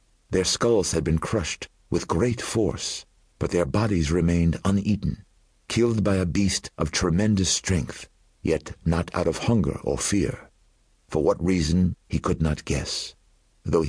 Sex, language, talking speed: male, English, 150 wpm